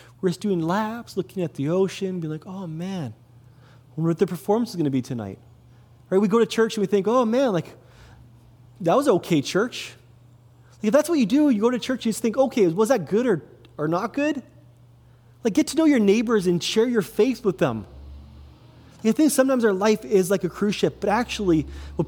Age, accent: 30-49, American